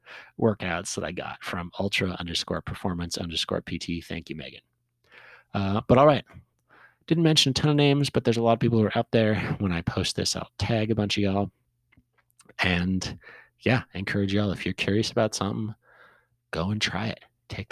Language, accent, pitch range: English, American, 95-120 Hz